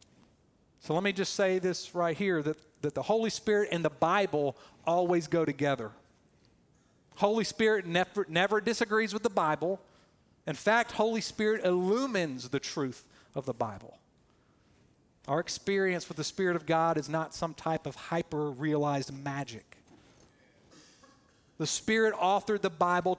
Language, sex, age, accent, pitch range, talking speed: English, male, 40-59, American, 145-195 Hz, 140 wpm